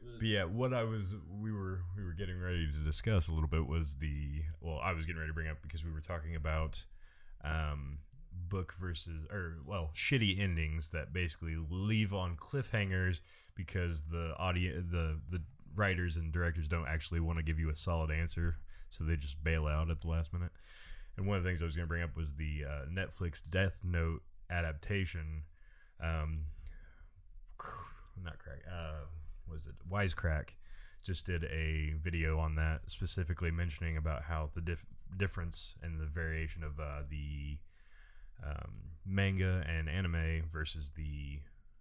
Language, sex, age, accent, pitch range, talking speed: English, male, 20-39, American, 80-95 Hz, 170 wpm